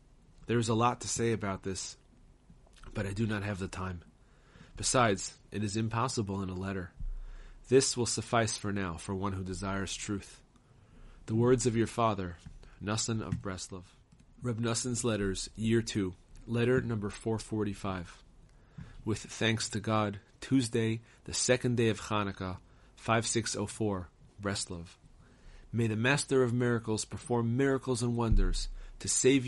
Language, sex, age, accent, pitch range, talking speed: English, male, 30-49, American, 95-120 Hz, 145 wpm